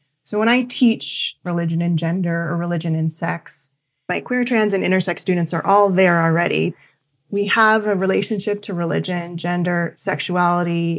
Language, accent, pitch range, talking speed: English, American, 170-210 Hz, 160 wpm